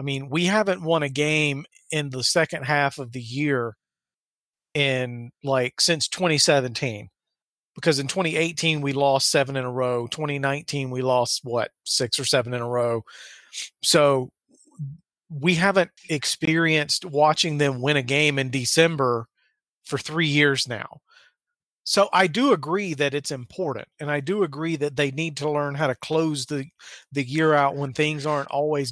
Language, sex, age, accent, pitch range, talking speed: English, male, 40-59, American, 140-165 Hz, 165 wpm